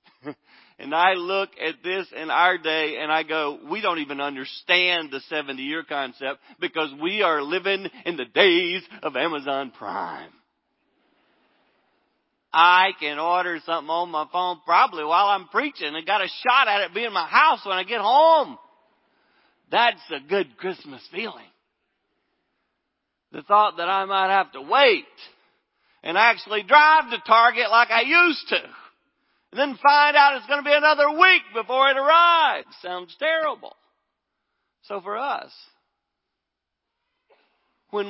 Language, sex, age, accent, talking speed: English, male, 40-59, American, 150 wpm